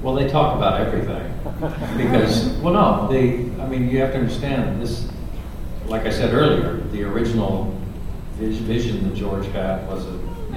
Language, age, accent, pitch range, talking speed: English, 50-69, American, 95-110 Hz, 165 wpm